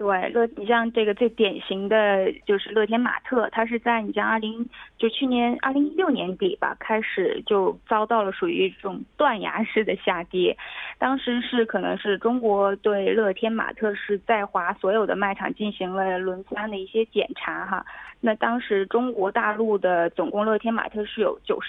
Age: 20-39